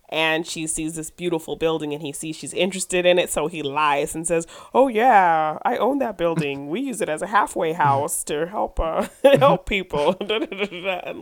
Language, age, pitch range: English, 30-49, 160-210 Hz